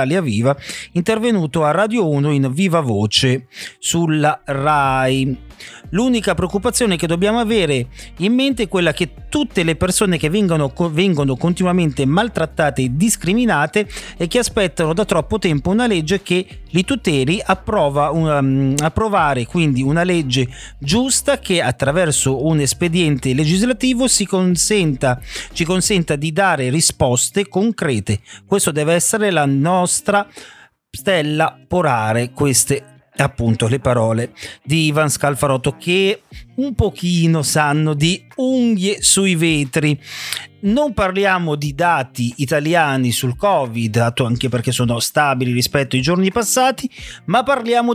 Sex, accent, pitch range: male, native, 140-200 Hz